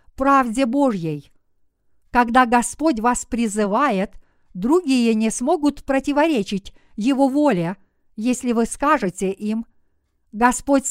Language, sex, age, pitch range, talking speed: Russian, female, 50-69, 215-275 Hz, 95 wpm